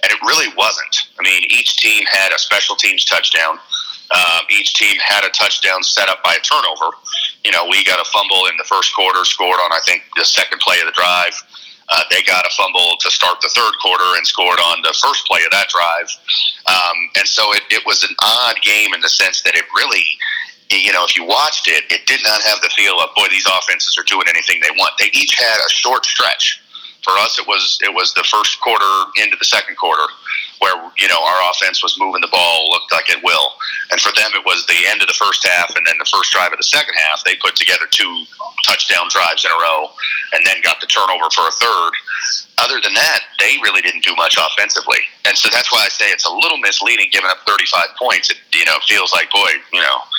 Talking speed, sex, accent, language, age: 240 wpm, male, American, English, 40-59